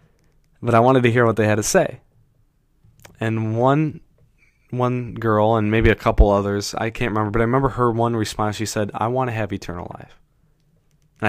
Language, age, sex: English, 20-39, male